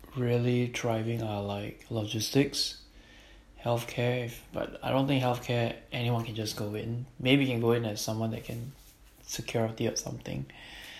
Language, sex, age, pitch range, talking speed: English, male, 20-39, 110-130 Hz, 155 wpm